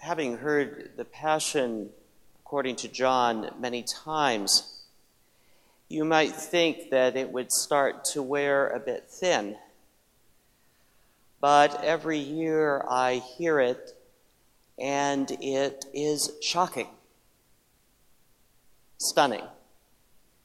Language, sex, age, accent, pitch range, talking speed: English, male, 40-59, American, 125-155 Hz, 95 wpm